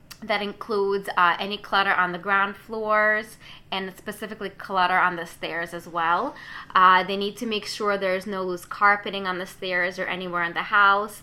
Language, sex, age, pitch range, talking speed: English, female, 20-39, 175-205 Hz, 185 wpm